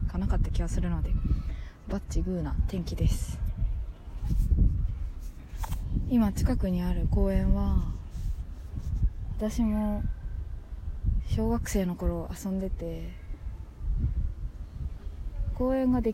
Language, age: Japanese, 20-39